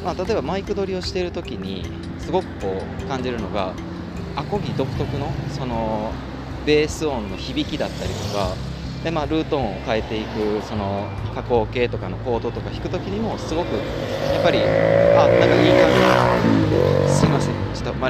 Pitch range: 85-130 Hz